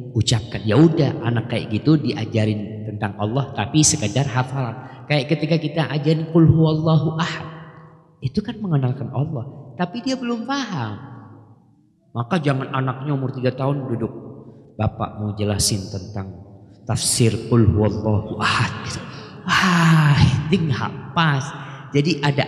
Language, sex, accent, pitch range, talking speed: Indonesian, male, native, 110-145 Hz, 125 wpm